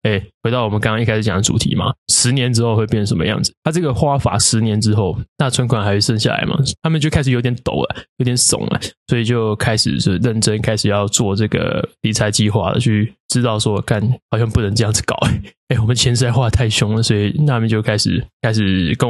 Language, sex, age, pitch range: Chinese, male, 20-39, 100-120 Hz